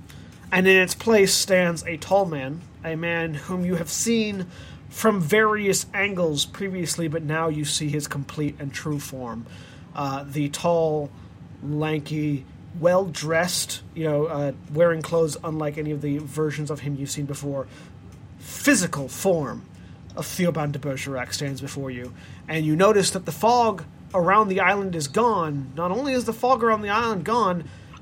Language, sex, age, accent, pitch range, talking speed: English, male, 30-49, American, 150-185 Hz, 165 wpm